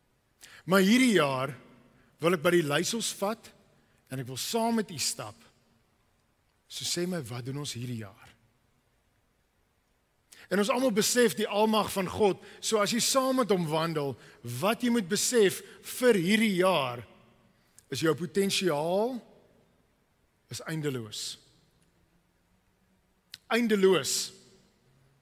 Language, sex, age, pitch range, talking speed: English, male, 50-69, 135-210 Hz, 120 wpm